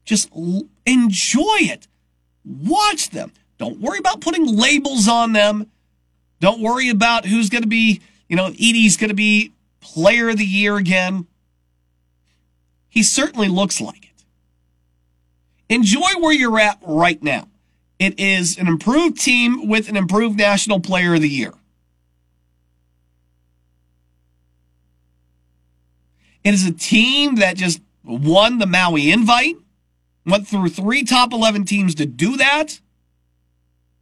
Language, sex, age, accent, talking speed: English, male, 40-59, American, 130 wpm